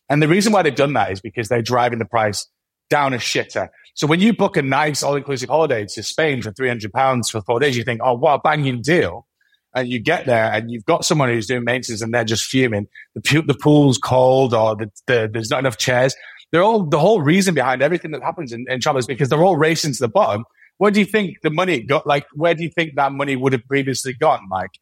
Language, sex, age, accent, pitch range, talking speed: English, male, 30-49, British, 125-160 Hz, 245 wpm